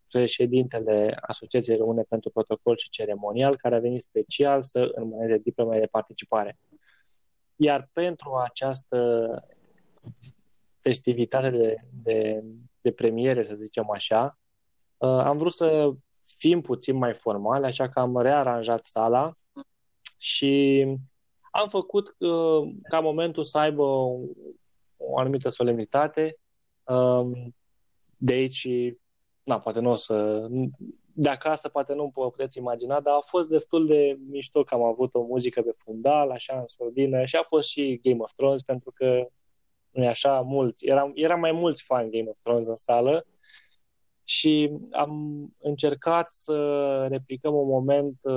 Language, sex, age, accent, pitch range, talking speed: Romanian, male, 20-39, native, 115-140 Hz, 135 wpm